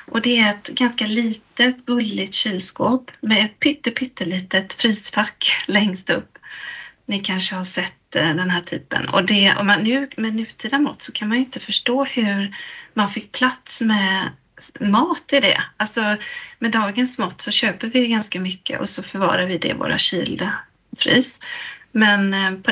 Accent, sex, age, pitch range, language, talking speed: native, female, 30-49, 205-245 Hz, Swedish, 170 wpm